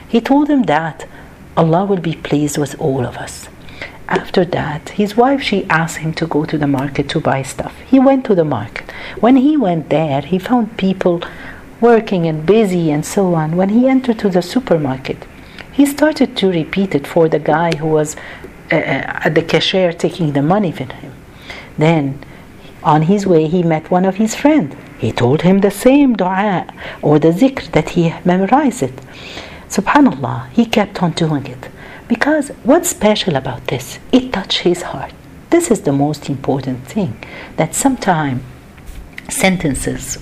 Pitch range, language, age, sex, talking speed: 140-200 Hz, Arabic, 50-69, female, 175 wpm